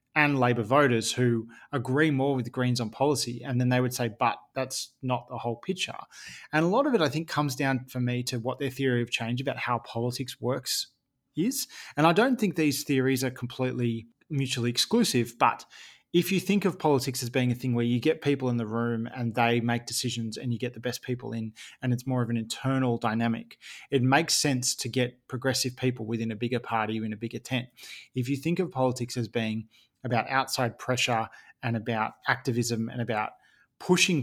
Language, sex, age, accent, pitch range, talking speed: English, male, 20-39, Australian, 120-135 Hz, 210 wpm